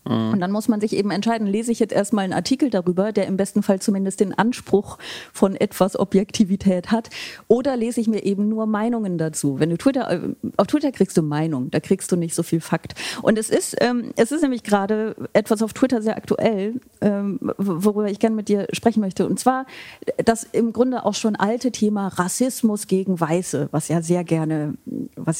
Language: German